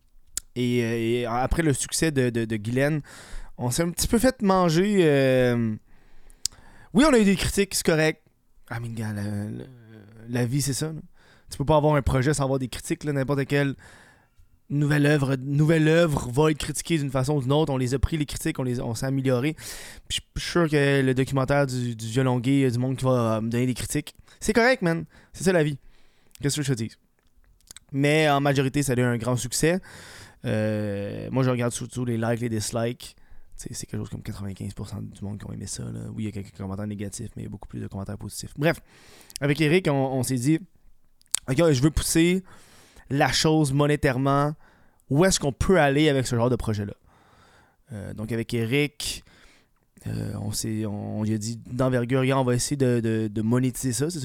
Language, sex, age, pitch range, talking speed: French, male, 20-39, 110-145 Hz, 220 wpm